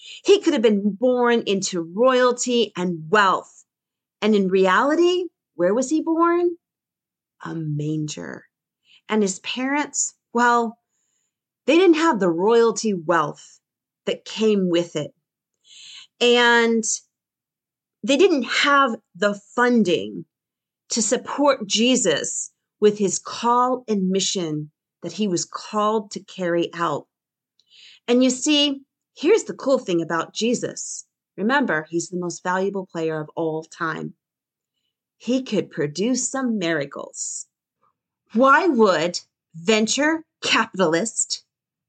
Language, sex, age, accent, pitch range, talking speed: English, female, 40-59, American, 180-255 Hz, 115 wpm